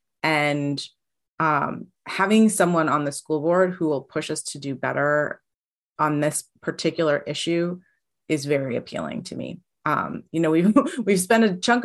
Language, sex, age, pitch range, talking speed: English, female, 30-49, 145-195 Hz, 160 wpm